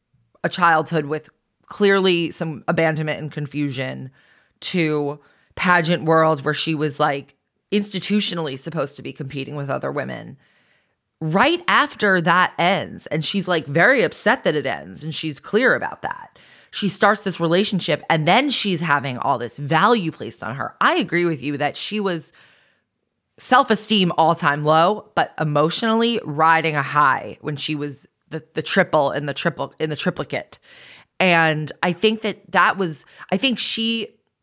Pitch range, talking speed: 145-180 Hz, 155 wpm